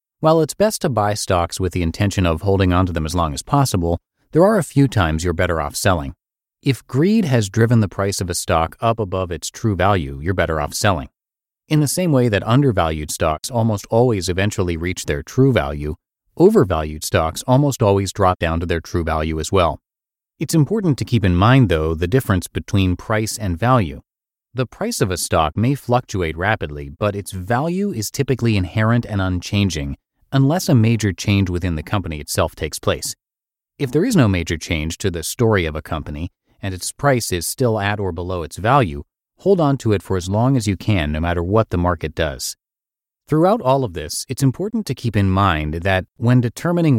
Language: English